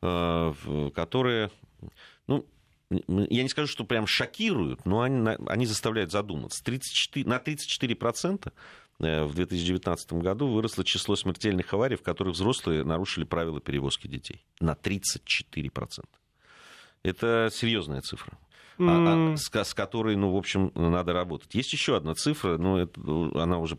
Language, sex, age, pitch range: Russian, male, 40-59, 80-110 Hz